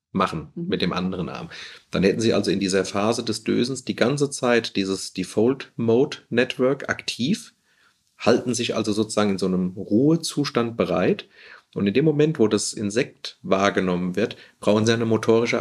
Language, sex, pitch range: German, male, 105-125 Hz